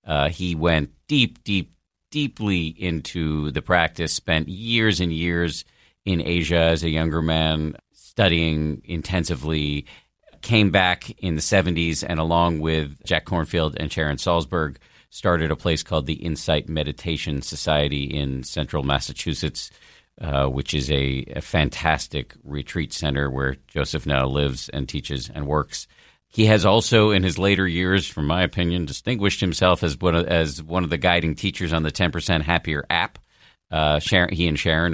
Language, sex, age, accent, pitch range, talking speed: English, male, 50-69, American, 75-85 Hz, 150 wpm